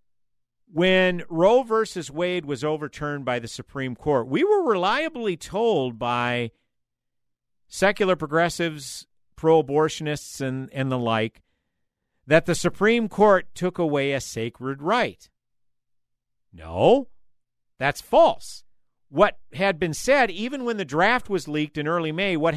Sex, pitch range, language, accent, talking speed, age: male, 140-230 Hz, English, American, 130 wpm, 50-69